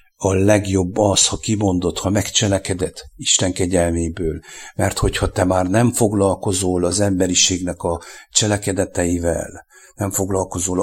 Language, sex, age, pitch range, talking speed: English, male, 60-79, 90-105 Hz, 115 wpm